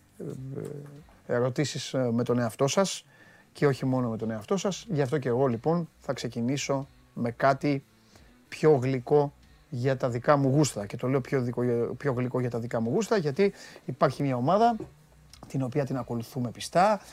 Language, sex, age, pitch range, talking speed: Greek, male, 30-49, 120-150 Hz, 170 wpm